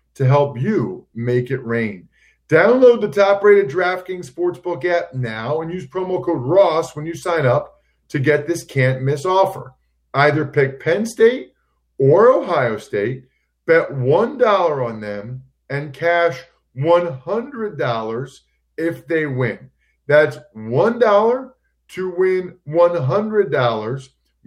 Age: 50-69